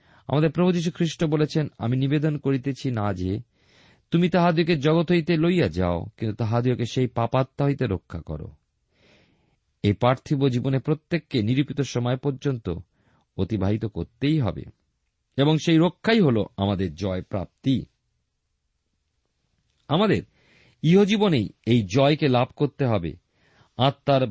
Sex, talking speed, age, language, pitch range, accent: male, 115 wpm, 50-69, Bengali, 100-155 Hz, native